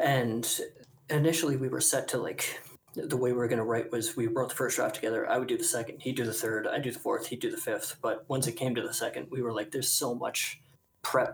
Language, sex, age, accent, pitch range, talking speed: English, male, 20-39, American, 115-135 Hz, 275 wpm